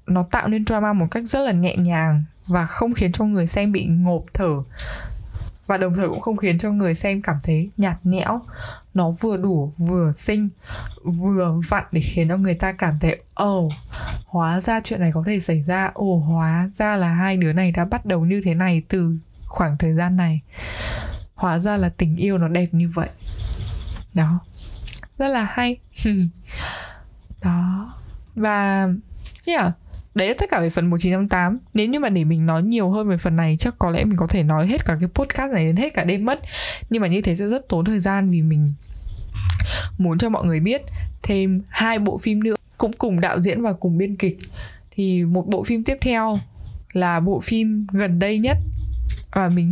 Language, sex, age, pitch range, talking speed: Vietnamese, female, 20-39, 160-205 Hz, 210 wpm